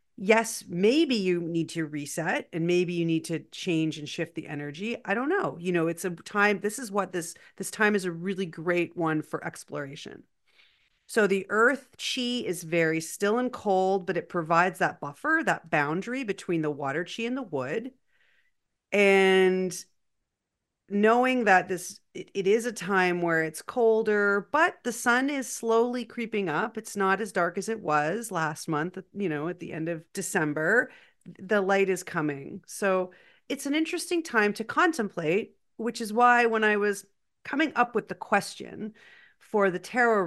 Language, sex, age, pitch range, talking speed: English, female, 40-59, 165-220 Hz, 175 wpm